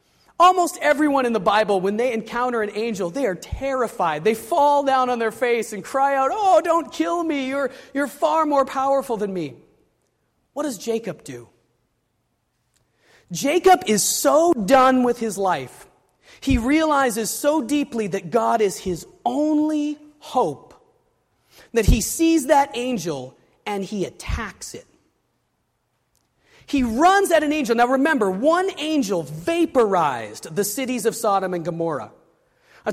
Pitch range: 215-300 Hz